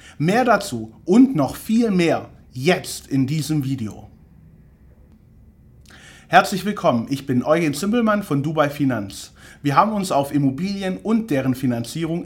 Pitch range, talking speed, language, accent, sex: 125-195 Hz, 130 wpm, German, German, male